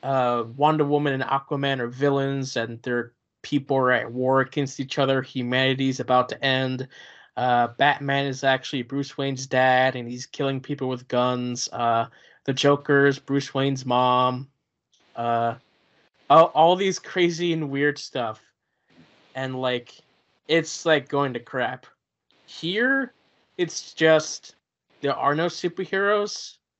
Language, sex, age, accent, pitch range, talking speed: English, male, 20-39, American, 130-160 Hz, 140 wpm